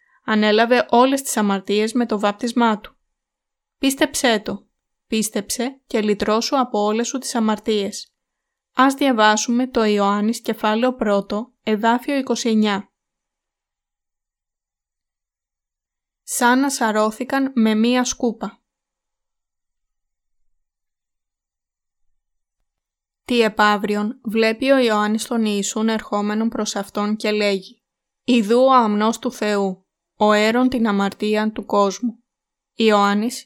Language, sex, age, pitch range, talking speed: Greek, female, 20-39, 205-245 Hz, 100 wpm